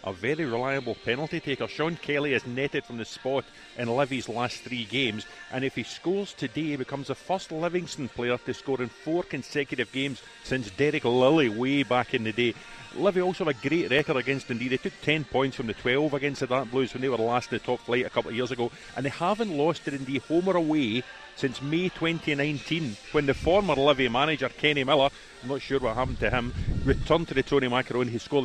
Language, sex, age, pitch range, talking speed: English, male, 40-59, 125-145 Hz, 230 wpm